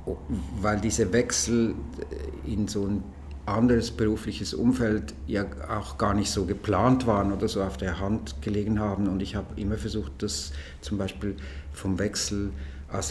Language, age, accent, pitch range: German, 50-69, German, 95-110 Hz